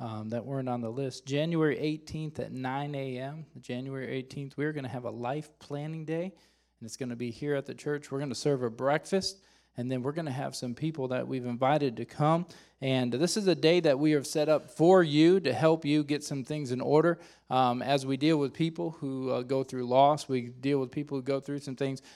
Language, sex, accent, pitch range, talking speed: English, male, American, 140-165 Hz, 240 wpm